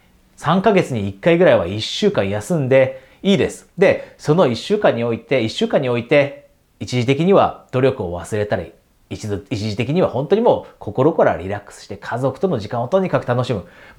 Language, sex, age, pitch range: Japanese, male, 30-49, 105-155 Hz